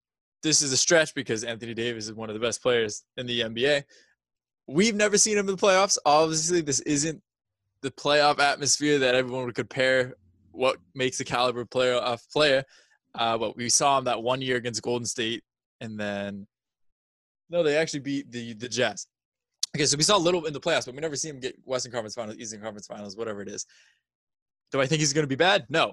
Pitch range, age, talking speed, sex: 120-150 Hz, 20-39, 215 wpm, male